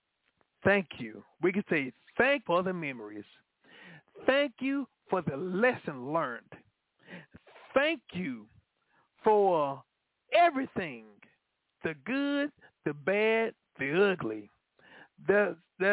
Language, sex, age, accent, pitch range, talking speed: English, male, 50-69, American, 170-270 Hz, 100 wpm